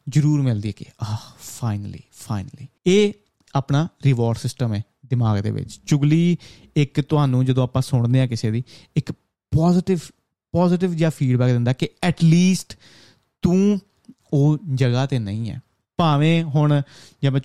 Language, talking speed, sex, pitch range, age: Punjabi, 140 wpm, male, 120-150 Hz, 30-49